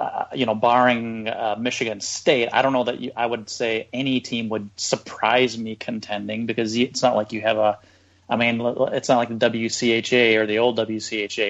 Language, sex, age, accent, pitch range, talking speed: English, male, 30-49, American, 105-120 Hz, 200 wpm